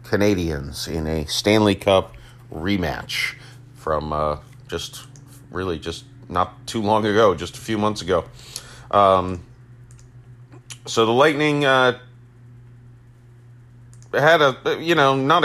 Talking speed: 115 wpm